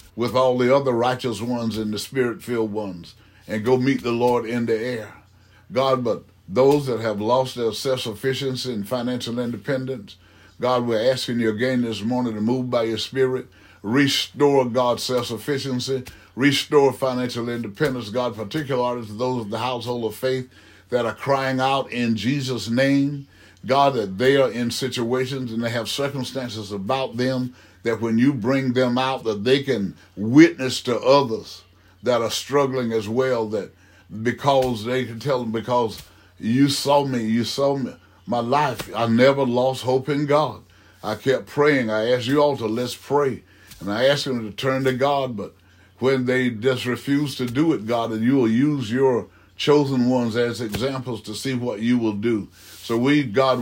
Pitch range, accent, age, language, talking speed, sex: 110-130 Hz, American, 60-79, English, 175 wpm, male